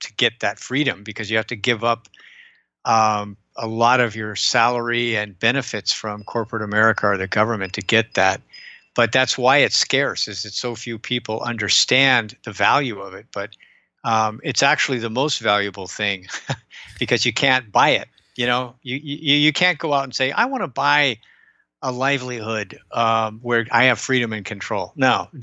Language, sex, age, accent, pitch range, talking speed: English, male, 50-69, American, 110-130 Hz, 190 wpm